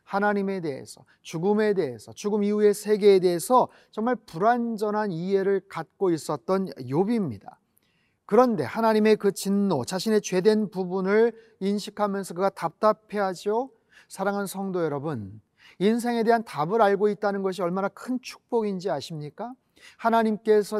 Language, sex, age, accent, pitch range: Korean, male, 30-49, native, 195-225 Hz